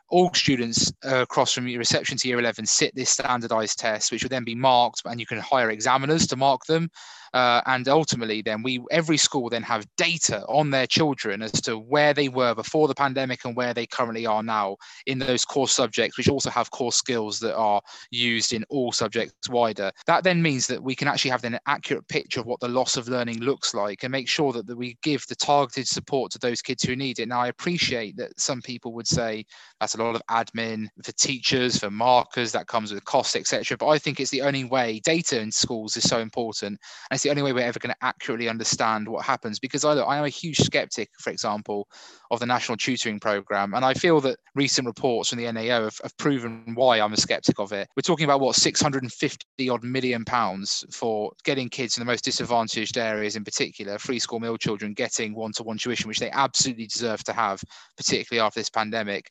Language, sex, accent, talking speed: English, male, British, 225 wpm